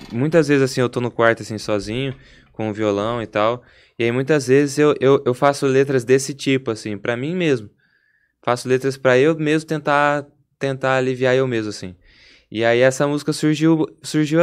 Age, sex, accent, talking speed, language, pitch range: 20-39, male, Brazilian, 190 wpm, Portuguese, 110-130 Hz